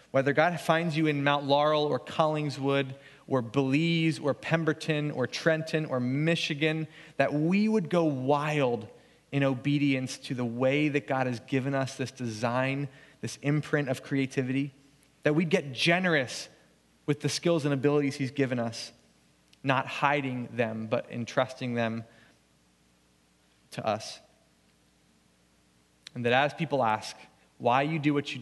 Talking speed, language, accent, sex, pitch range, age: 145 wpm, English, American, male, 110-145 Hz, 30-49